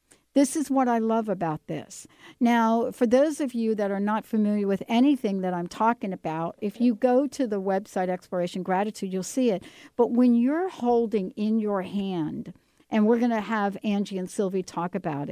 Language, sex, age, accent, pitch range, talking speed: English, female, 60-79, American, 190-255 Hz, 195 wpm